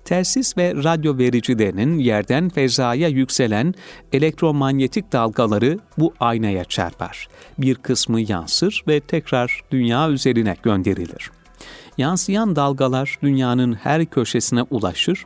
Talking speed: 100 wpm